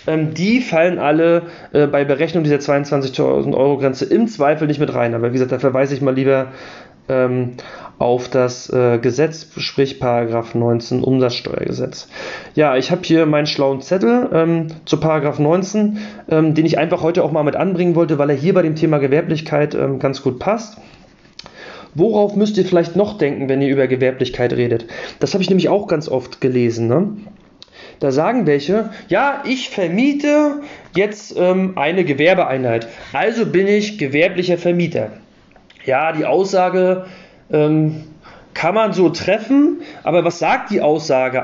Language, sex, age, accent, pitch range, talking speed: German, male, 30-49, German, 135-185 Hz, 160 wpm